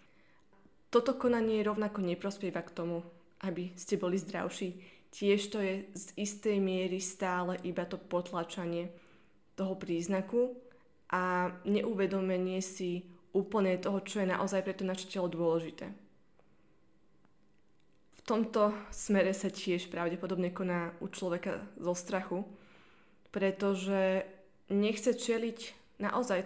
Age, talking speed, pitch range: 20-39, 110 wpm, 185-215 Hz